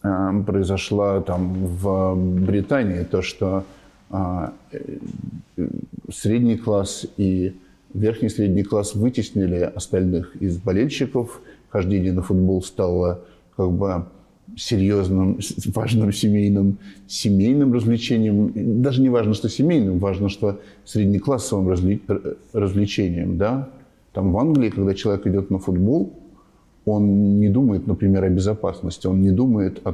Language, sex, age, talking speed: Russian, male, 50-69, 110 wpm